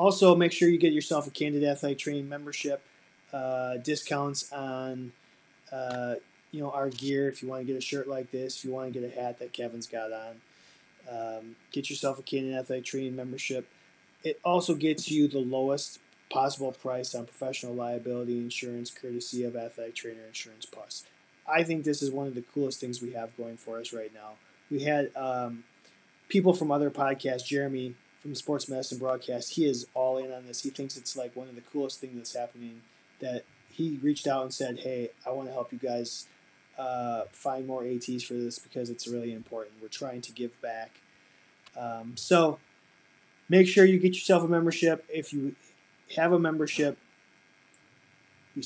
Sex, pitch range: male, 120-145 Hz